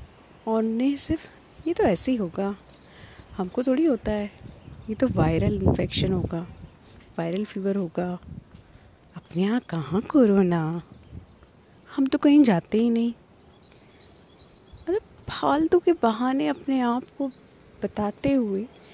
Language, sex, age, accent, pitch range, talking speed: Hindi, female, 30-49, native, 195-260 Hz, 125 wpm